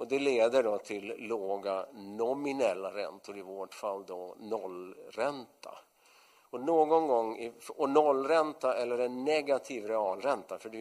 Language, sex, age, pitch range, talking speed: English, male, 50-69, 95-145 Hz, 135 wpm